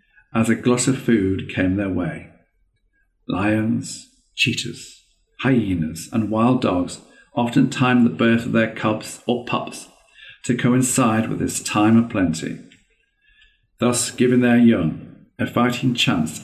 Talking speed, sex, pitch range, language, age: 135 wpm, male, 100-125 Hz, English, 50-69